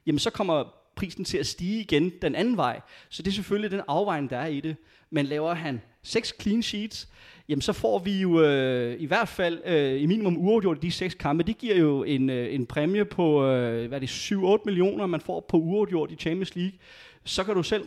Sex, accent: male, native